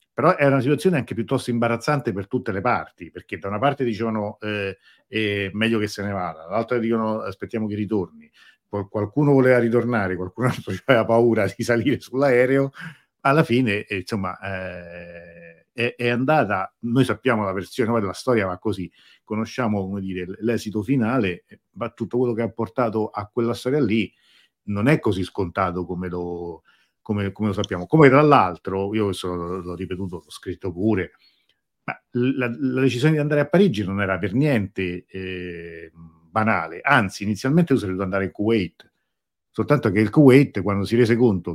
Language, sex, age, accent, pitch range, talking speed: Italian, male, 50-69, native, 95-120 Hz, 170 wpm